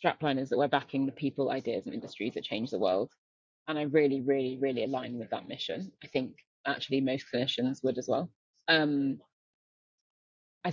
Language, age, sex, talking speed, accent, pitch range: English, 20-39, female, 185 wpm, British, 130-150 Hz